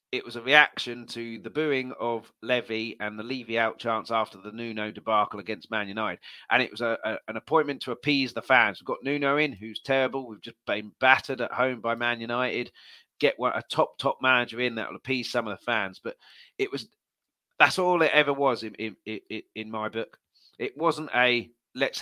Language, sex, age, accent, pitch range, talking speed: English, male, 30-49, British, 110-135 Hz, 215 wpm